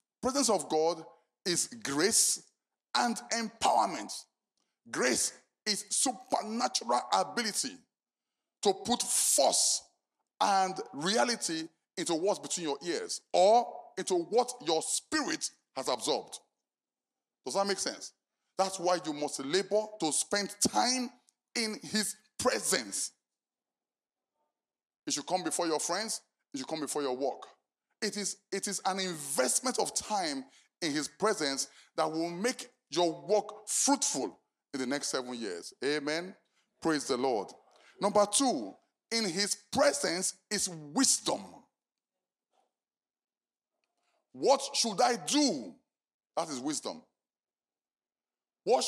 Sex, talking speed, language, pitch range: male, 120 wpm, English, 185-255 Hz